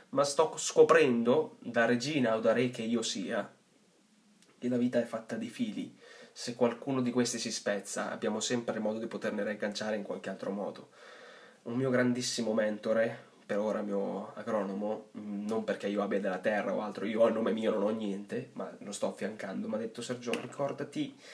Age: 20-39